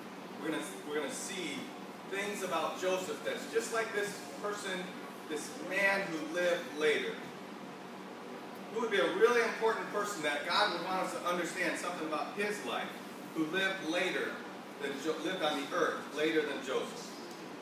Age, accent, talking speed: 40-59, American, 160 wpm